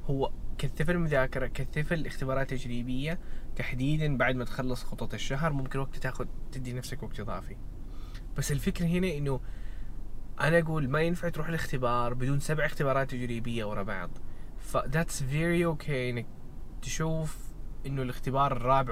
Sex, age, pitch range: male, 20-39, 120-155 Hz